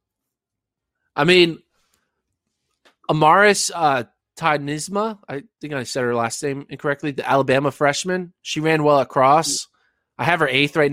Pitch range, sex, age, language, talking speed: 125-155 Hz, male, 20-39, English, 135 wpm